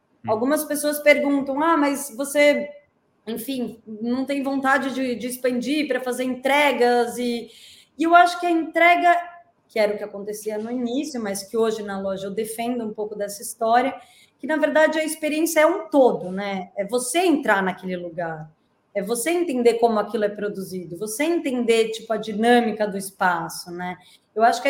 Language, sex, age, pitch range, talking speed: Portuguese, female, 20-39, 195-270 Hz, 175 wpm